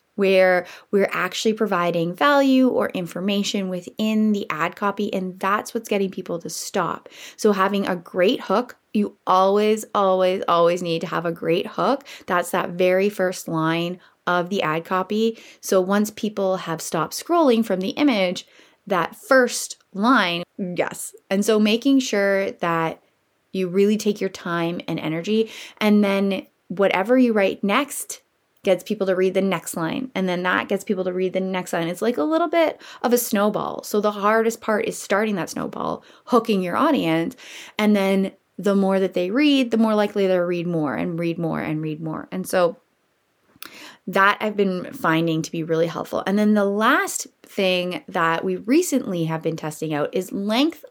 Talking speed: 180 wpm